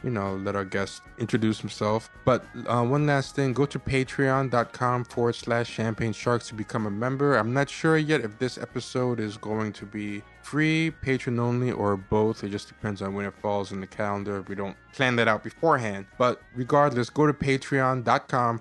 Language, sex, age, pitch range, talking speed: English, male, 20-39, 105-130 Hz, 195 wpm